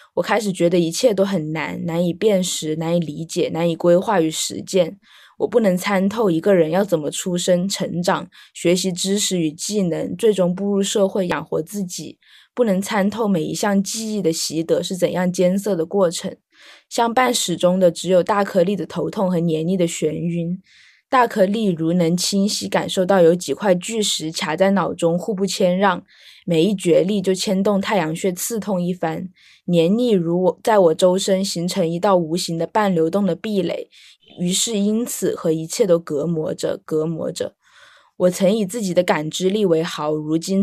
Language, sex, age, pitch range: Chinese, female, 20-39, 170-200 Hz